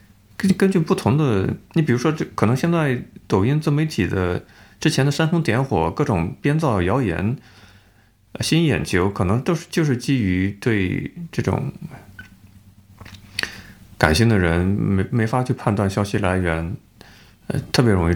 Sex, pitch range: male, 100-145 Hz